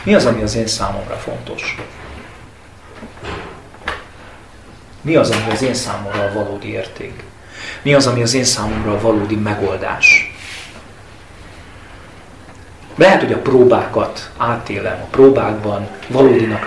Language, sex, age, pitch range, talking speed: Hungarian, male, 40-59, 100-120 Hz, 120 wpm